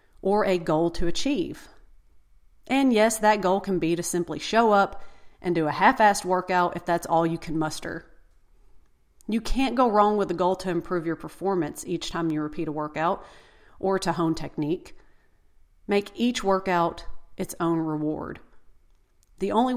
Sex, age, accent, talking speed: female, 40-59, American, 165 wpm